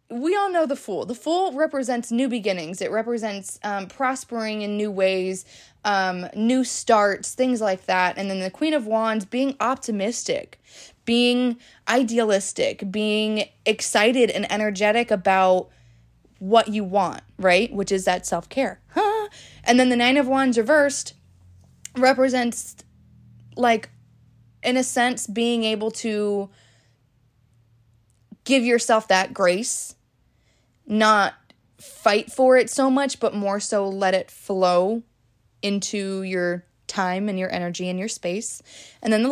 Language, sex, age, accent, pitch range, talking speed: English, female, 20-39, American, 195-250 Hz, 135 wpm